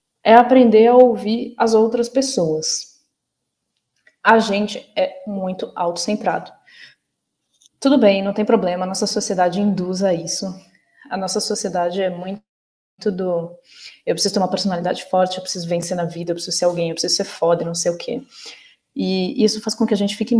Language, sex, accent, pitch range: Portuguese, female, Brazilian, 180-220 Hz